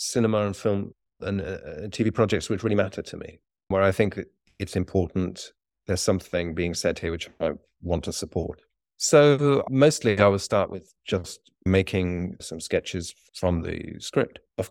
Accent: British